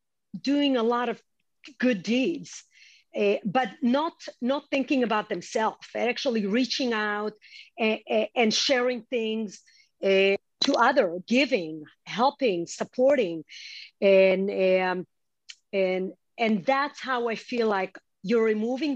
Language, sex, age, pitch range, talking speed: Hebrew, female, 50-69, 195-245 Hz, 120 wpm